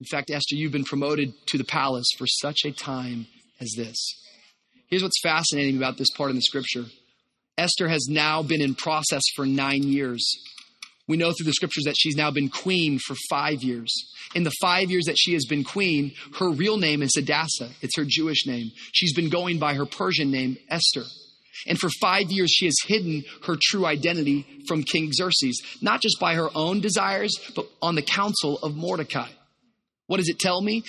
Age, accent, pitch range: 30-49, American, 145-190 Hz